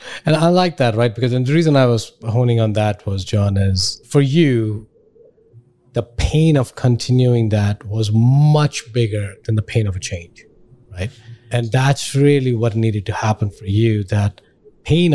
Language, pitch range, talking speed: English, 110-135 Hz, 180 wpm